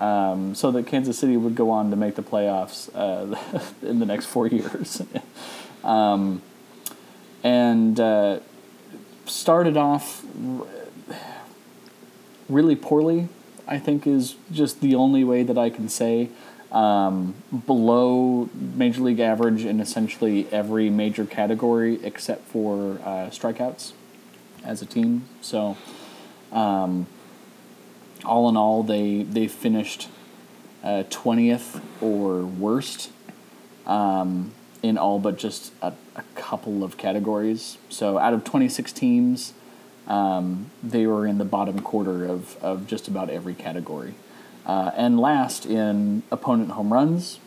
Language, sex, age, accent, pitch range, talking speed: English, male, 30-49, American, 100-125 Hz, 125 wpm